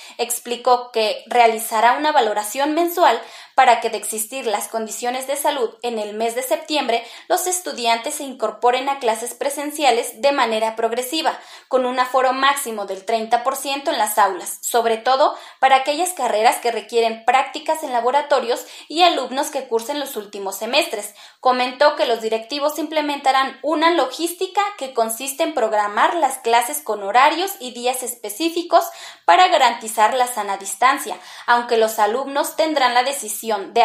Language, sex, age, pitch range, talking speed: Spanish, female, 20-39, 225-295 Hz, 150 wpm